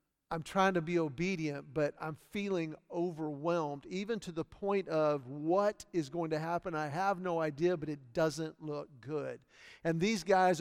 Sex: male